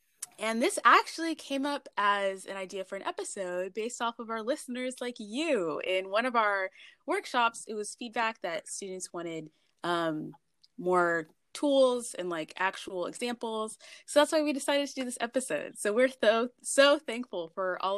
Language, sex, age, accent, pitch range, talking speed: English, female, 20-39, American, 180-245 Hz, 175 wpm